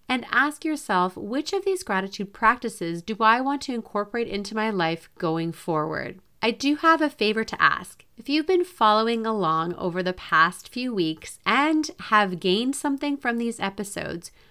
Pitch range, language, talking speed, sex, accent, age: 175-250 Hz, English, 175 wpm, female, American, 30-49